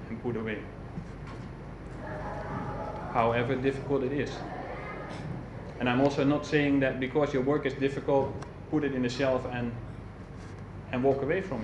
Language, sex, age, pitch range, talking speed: English, male, 30-49, 95-140 Hz, 140 wpm